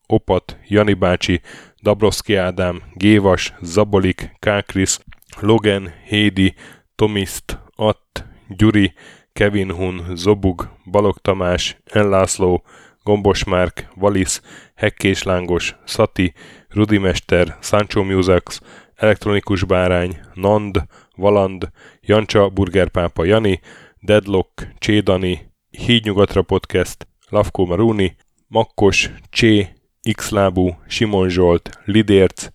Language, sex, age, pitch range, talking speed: Hungarian, male, 10-29, 90-105 Hz, 90 wpm